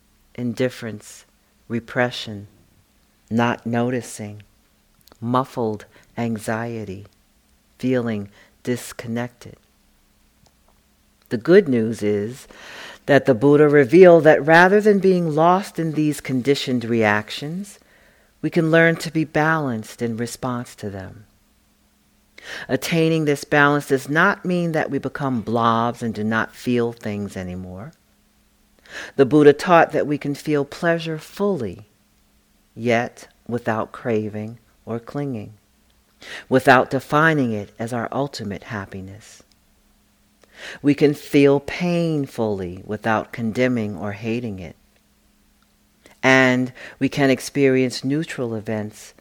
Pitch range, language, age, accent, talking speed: 105-140 Hz, English, 50-69, American, 105 wpm